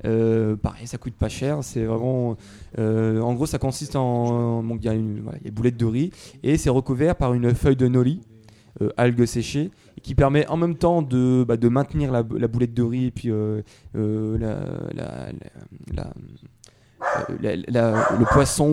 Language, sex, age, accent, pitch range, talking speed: French, male, 20-39, French, 115-140 Hz, 180 wpm